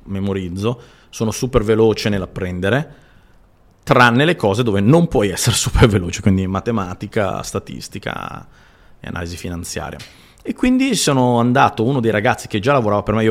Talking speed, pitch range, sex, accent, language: 150 wpm, 95-125 Hz, male, native, Italian